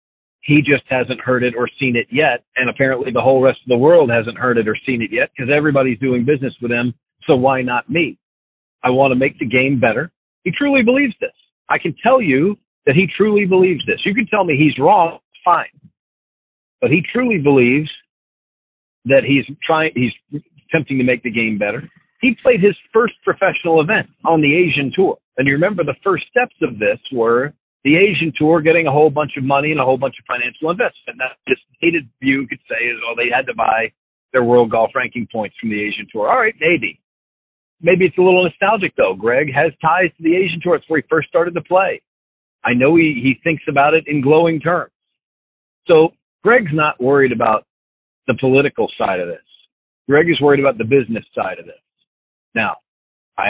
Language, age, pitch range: English, 50-69, 125-170 Hz